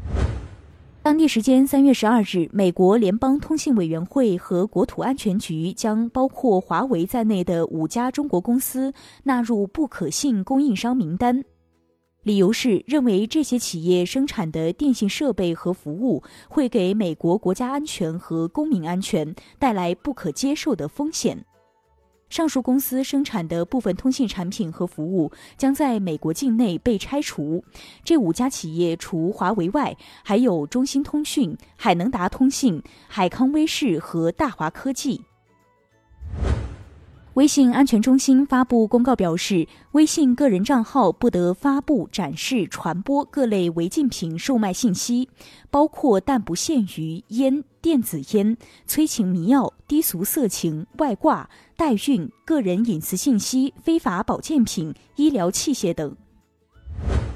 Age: 20-39